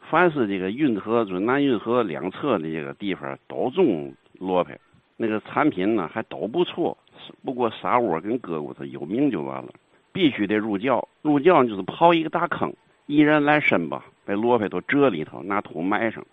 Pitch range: 90-125 Hz